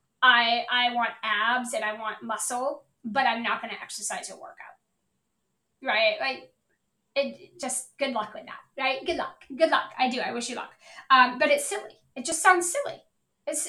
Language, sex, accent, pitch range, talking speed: English, female, American, 245-315 Hz, 195 wpm